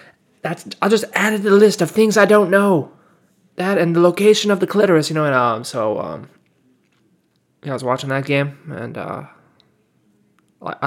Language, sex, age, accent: English, male, 20-39, American